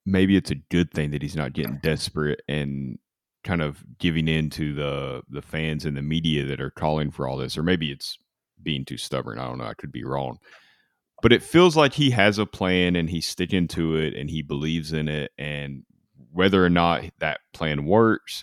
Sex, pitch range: male, 75-90 Hz